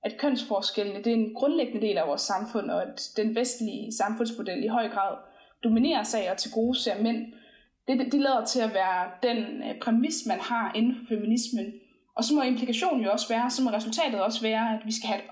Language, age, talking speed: Danish, 20-39, 220 wpm